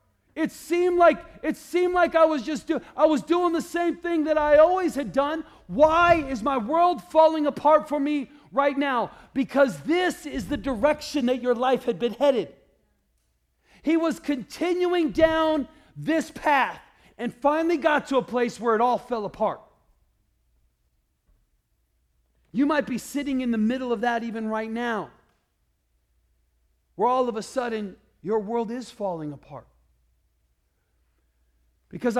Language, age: English, 40-59